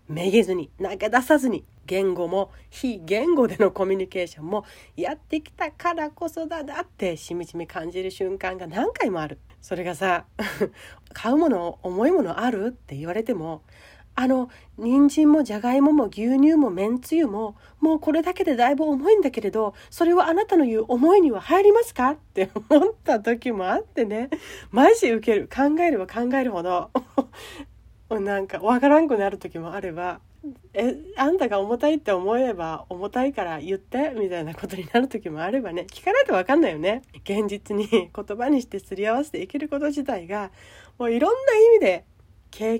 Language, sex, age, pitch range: Japanese, female, 40-59, 195-295 Hz